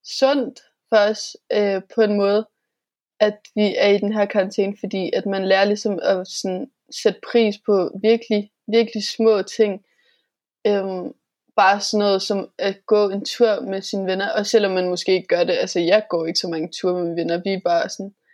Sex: female